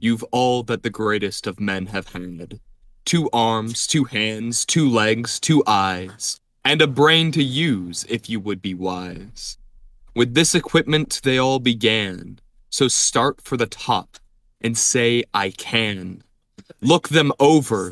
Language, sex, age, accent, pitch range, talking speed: English, male, 20-39, American, 110-135 Hz, 150 wpm